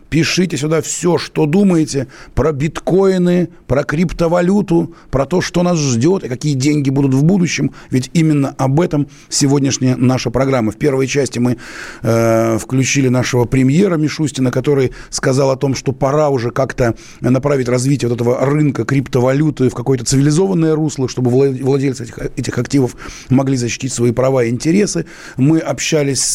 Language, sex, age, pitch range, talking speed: Russian, male, 30-49, 130-155 Hz, 155 wpm